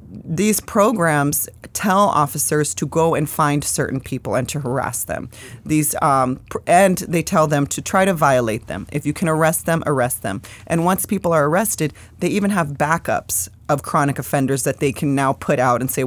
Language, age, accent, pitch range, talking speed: English, 30-49, American, 130-160 Hz, 200 wpm